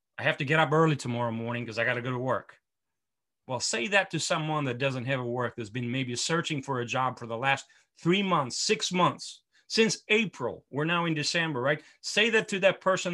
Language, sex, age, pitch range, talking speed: English, male, 30-49, 120-155 Hz, 235 wpm